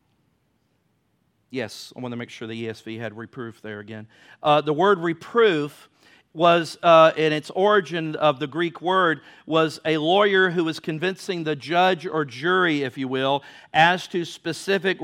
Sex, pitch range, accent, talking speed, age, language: male, 160-205 Hz, American, 165 wpm, 50-69, English